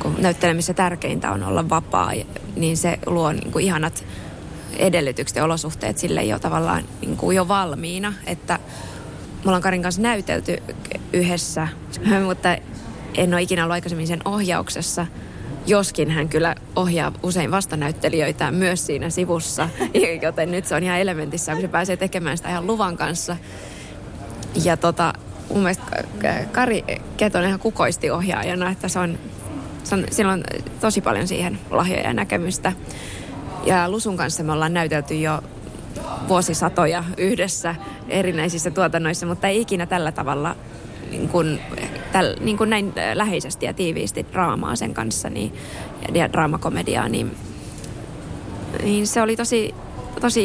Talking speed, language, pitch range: 130 wpm, Finnish, 155-190 Hz